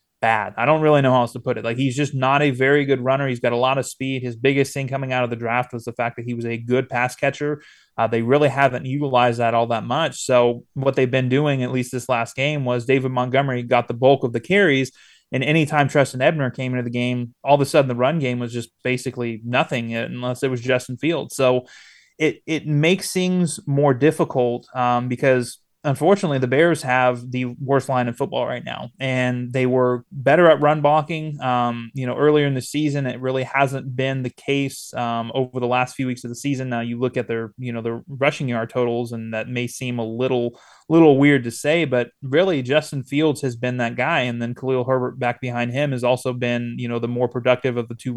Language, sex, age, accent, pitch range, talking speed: English, male, 20-39, American, 120-140 Hz, 235 wpm